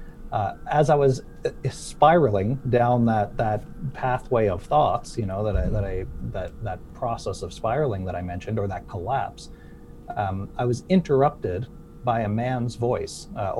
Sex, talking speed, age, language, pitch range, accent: male, 165 wpm, 40-59, English, 100-125 Hz, American